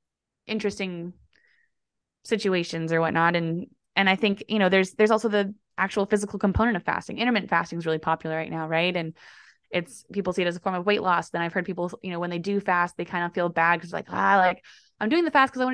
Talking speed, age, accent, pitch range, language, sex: 245 wpm, 20-39, American, 180-230 Hz, English, female